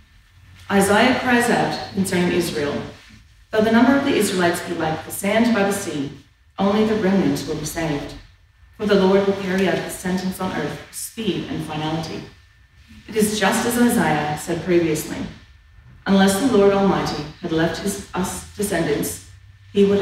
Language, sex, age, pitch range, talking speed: English, female, 40-59, 155-205 Hz, 170 wpm